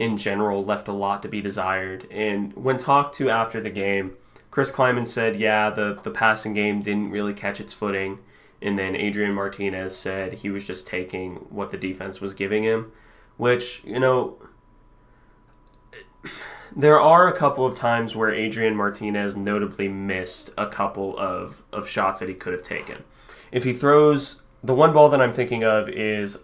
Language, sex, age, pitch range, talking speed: English, male, 20-39, 100-120 Hz, 175 wpm